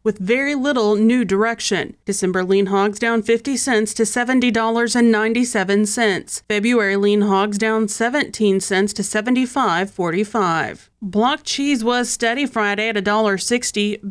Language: English